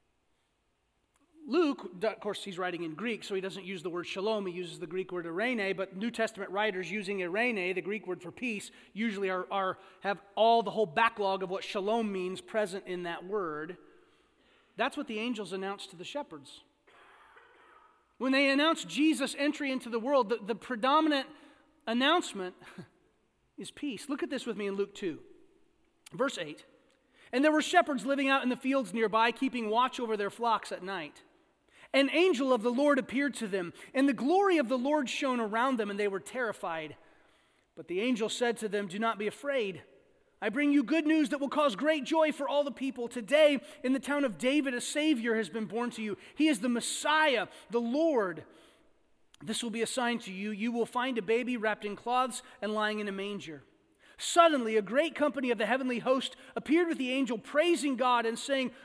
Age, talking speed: 30-49, 200 wpm